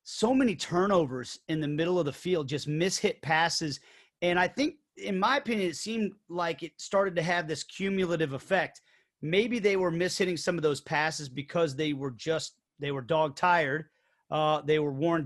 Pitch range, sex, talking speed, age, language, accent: 155-195 Hz, male, 190 wpm, 30-49, English, American